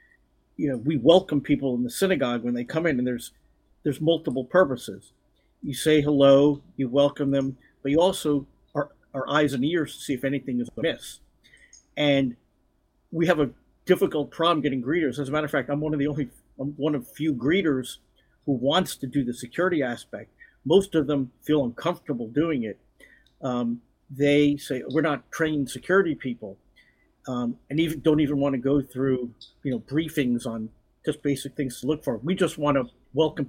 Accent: American